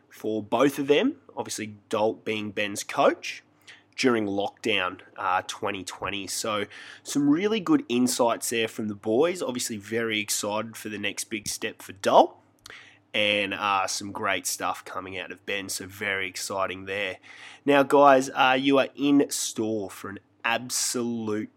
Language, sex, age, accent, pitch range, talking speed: English, male, 20-39, Australian, 105-120 Hz, 155 wpm